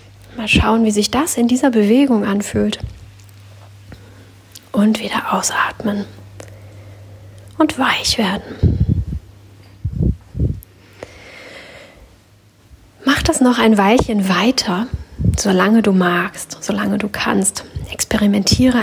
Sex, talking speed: female, 90 wpm